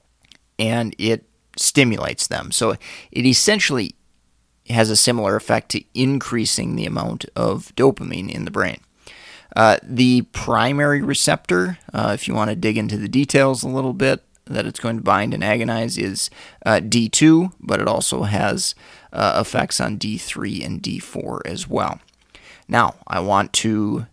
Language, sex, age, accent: English, male, 30-49, American